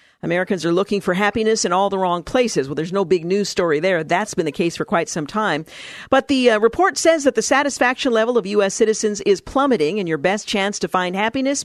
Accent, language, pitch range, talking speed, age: American, English, 170-225 Hz, 235 wpm, 50-69